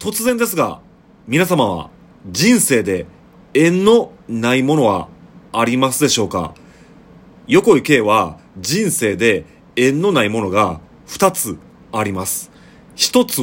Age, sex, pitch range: 30-49, male, 110-170 Hz